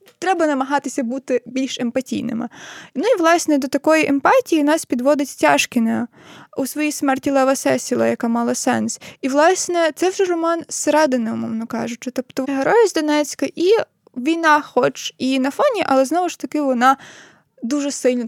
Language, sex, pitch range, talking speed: Ukrainian, female, 255-330 Hz, 155 wpm